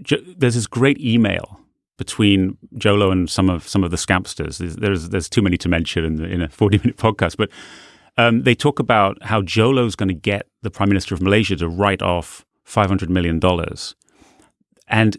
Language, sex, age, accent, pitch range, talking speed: English, male, 30-49, British, 95-110 Hz, 200 wpm